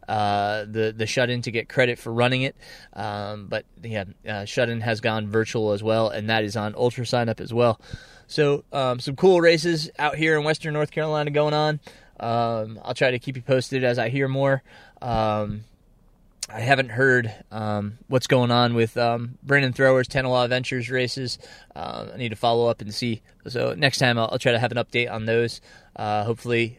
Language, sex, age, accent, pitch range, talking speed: English, male, 20-39, American, 115-140 Hz, 200 wpm